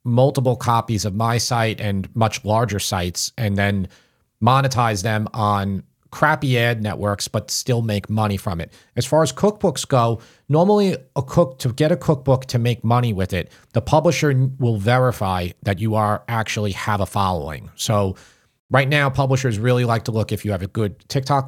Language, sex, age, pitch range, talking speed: English, male, 40-59, 100-130 Hz, 180 wpm